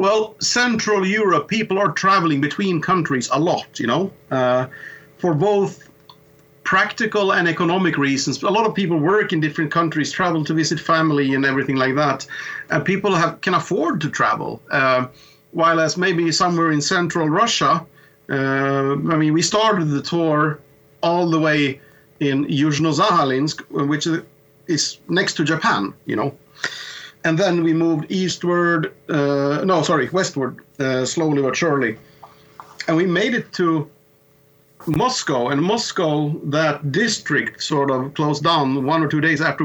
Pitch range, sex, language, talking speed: 140-170 Hz, male, Portuguese, 150 wpm